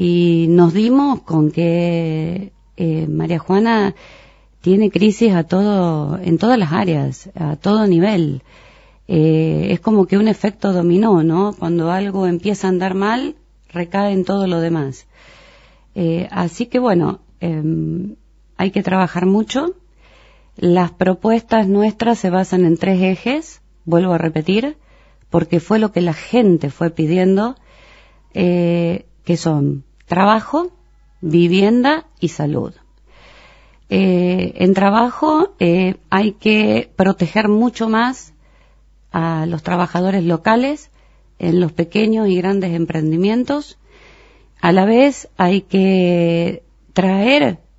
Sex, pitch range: female, 170-205 Hz